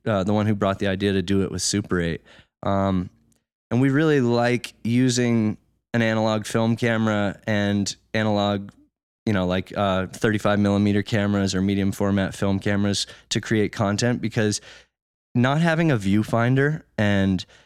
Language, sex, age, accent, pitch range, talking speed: English, male, 20-39, American, 100-115 Hz, 155 wpm